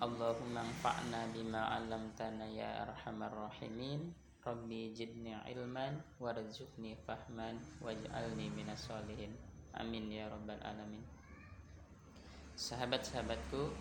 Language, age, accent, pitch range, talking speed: Indonesian, 20-39, native, 105-115 Hz, 80 wpm